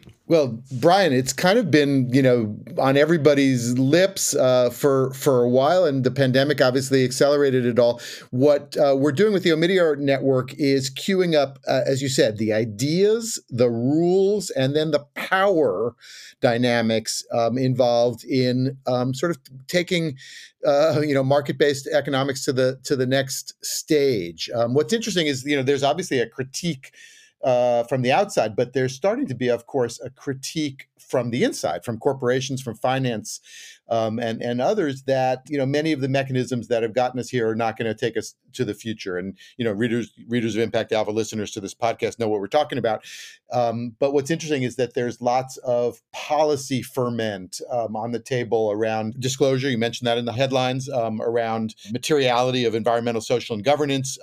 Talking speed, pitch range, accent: 185 wpm, 120-150 Hz, American